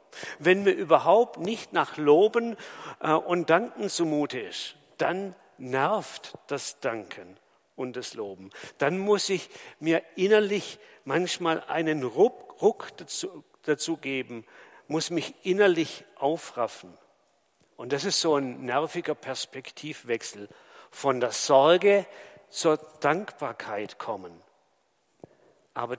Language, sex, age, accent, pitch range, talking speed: German, male, 50-69, German, 145-195 Hz, 105 wpm